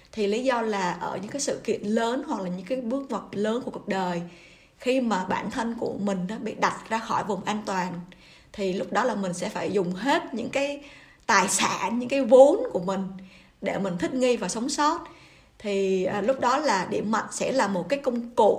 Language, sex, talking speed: Vietnamese, female, 230 wpm